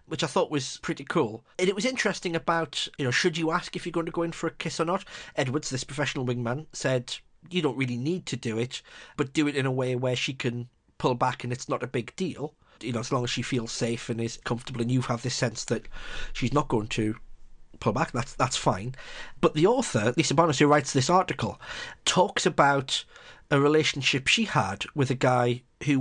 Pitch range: 125-160 Hz